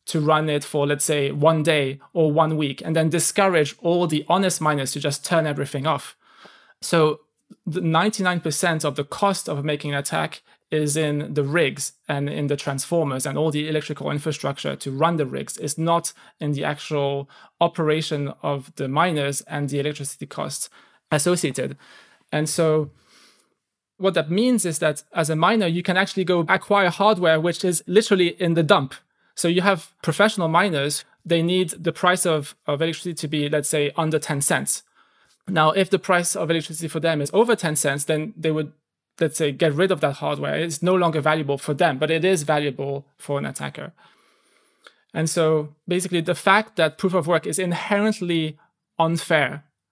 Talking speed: 185 wpm